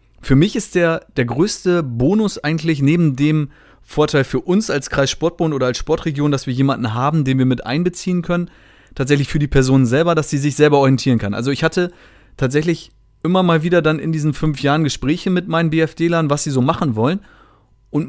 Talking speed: 200 wpm